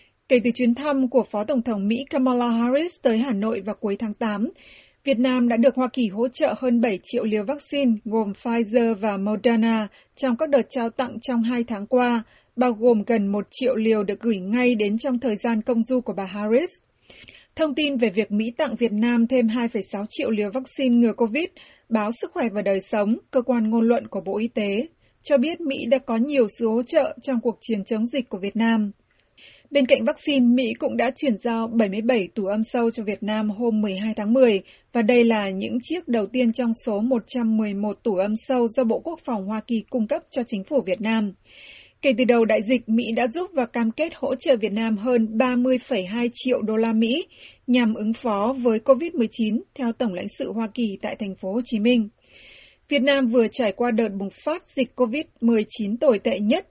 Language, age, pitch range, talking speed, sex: Vietnamese, 20-39, 220-260 Hz, 215 wpm, female